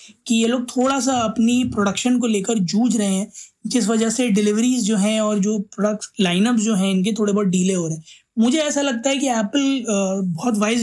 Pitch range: 205-235 Hz